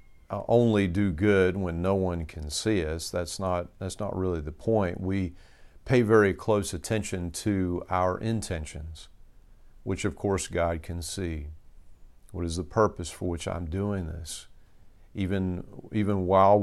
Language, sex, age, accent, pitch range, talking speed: English, male, 50-69, American, 85-105 Hz, 150 wpm